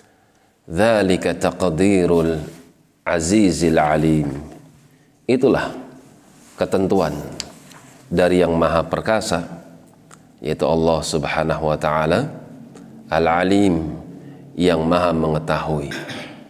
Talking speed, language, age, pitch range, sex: 70 wpm, Indonesian, 40-59, 80-95 Hz, male